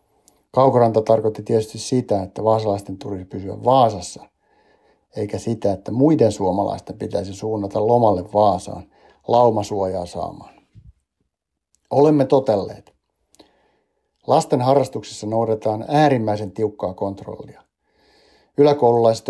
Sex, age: male, 60-79